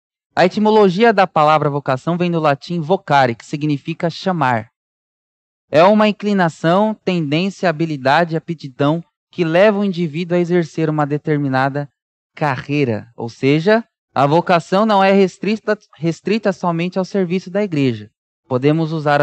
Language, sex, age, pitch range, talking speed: Portuguese, male, 20-39, 140-175 Hz, 135 wpm